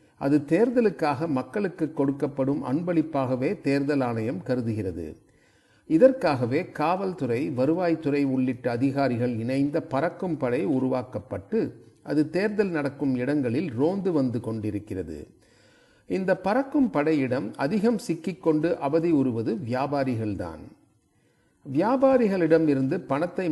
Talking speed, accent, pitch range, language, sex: 85 wpm, native, 125-170 Hz, Tamil, male